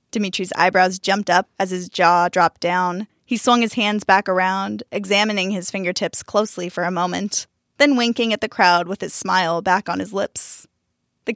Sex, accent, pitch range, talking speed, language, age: female, American, 180-225 Hz, 185 wpm, English, 10-29